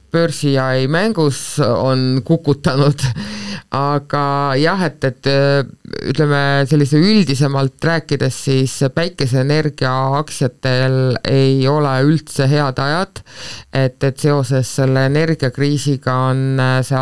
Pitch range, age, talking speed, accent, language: 130-145 Hz, 50-69, 100 wpm, Finnish, English